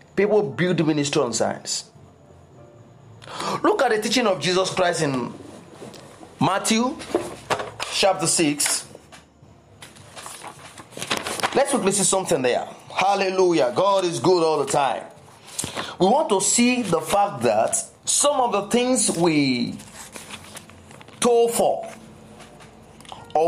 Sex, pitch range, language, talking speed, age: male, 185-245 Hz, English, 110 wpm, 30-49